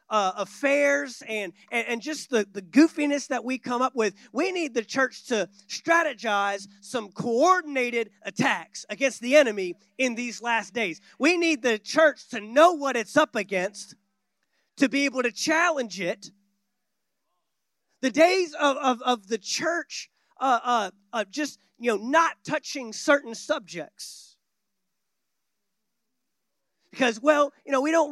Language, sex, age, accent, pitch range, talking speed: English, male, 30-49, American, 225-310 Hz, 150 wpm